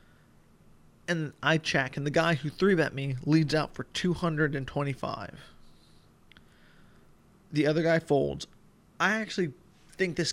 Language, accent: English, American